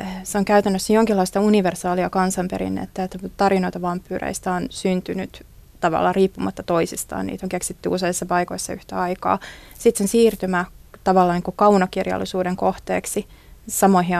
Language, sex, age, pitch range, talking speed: Finnish, female, 20-39, 165-190 Hz, 125 wpm